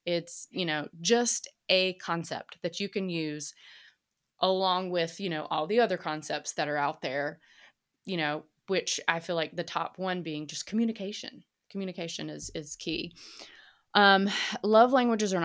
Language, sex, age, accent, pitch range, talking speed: English, female, 20-39, American, 165-195 Hz, 165 wpm